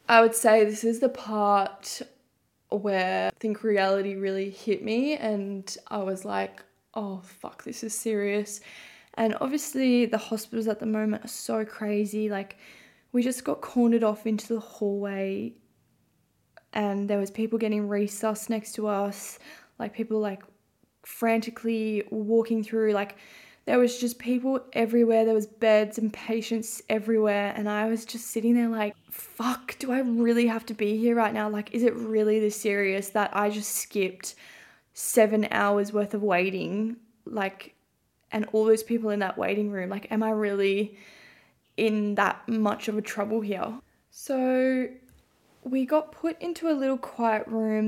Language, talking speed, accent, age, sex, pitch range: English, 165 wpm, Australian, 10-29, female, 205-230 Hz